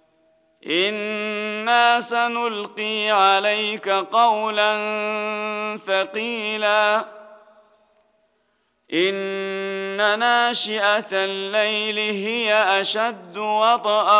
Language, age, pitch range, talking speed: Arabic, 40-59, 195-215 Hz, 45 wpm